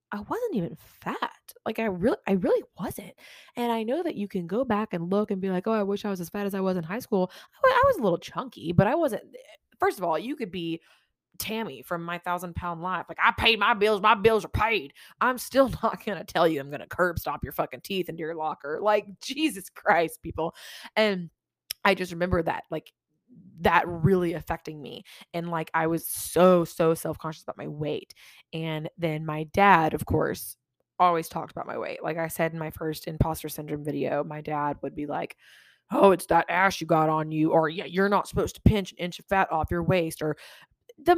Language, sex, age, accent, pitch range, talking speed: English, female, 20-39, American, 165-215 Hz, 230 wpm